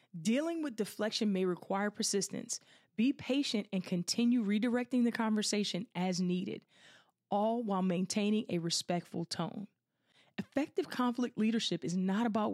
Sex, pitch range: female, 190-235 Hz